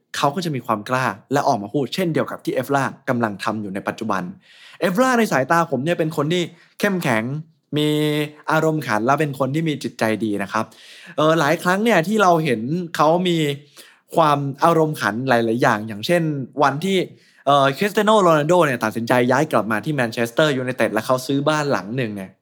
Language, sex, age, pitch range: Thai, male, 20-39, 125-180 Hz